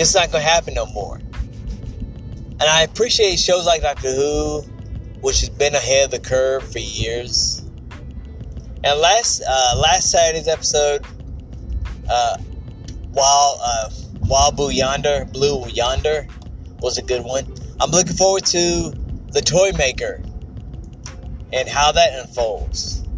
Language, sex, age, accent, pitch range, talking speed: English, male, 20-39, American, 90-145 Hz, 130 wpm